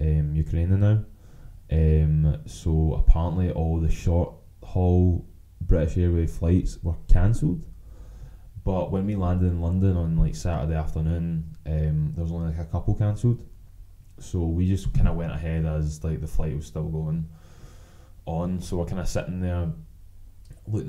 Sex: male